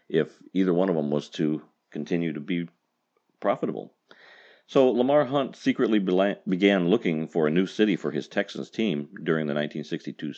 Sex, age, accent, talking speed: male, 50-69, American, 160 wpm